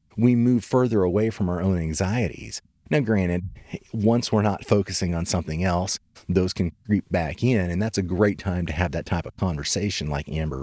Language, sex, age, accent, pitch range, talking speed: English, male, 30-49, American, 90-115 Hz, 200 wpm